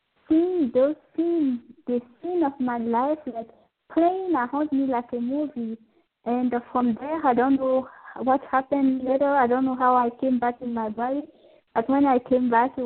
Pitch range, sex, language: 230-275 Hz, female, English